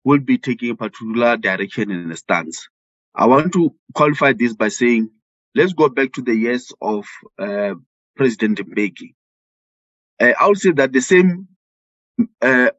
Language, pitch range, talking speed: English, 110-145 Hz, 160 wpm